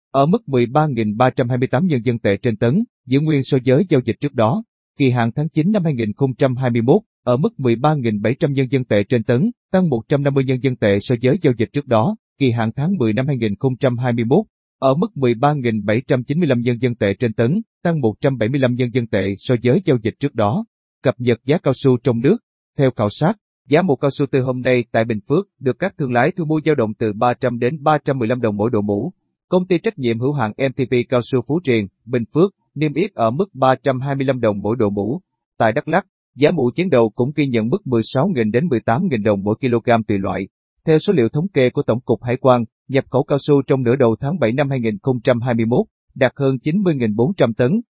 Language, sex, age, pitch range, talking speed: Vietnamese, male, 30-49, 115-145 Hz, 210 wpm